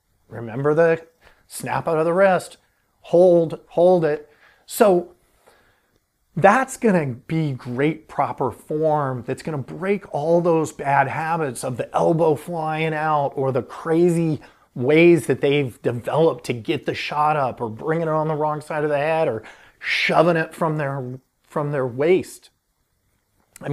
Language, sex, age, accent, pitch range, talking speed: English, male, 30-49, American, 130-170 Hz, 155 wpm